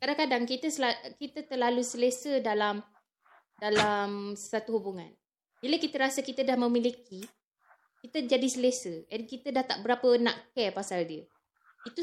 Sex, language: female, Malay